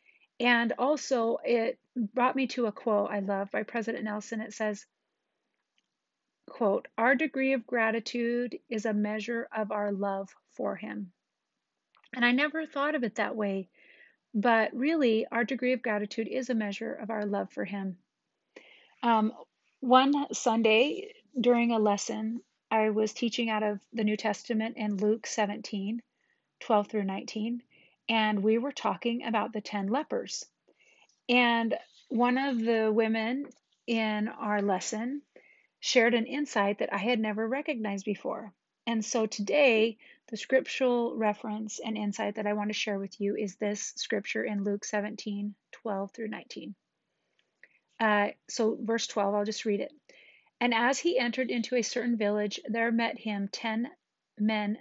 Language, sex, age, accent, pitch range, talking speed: English, female, 40-59, American, 210-245 Hz, 155 wpm